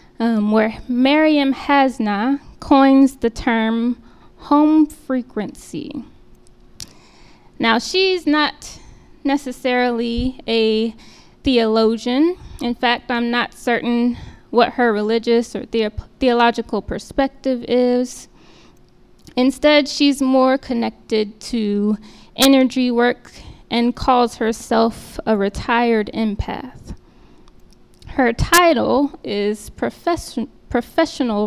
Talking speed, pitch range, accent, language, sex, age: 85 wpm, 230-280 Hz, American, English, female, 10-29